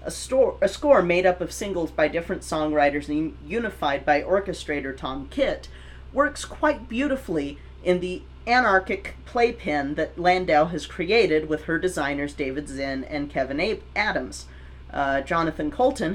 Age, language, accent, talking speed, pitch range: 40-59, English, American, 145 wpm, 150-195 Hz